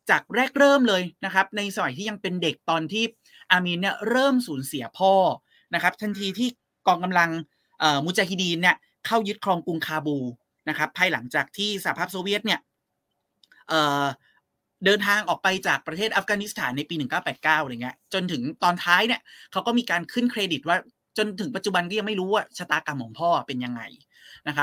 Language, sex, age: Thai, male, 20-39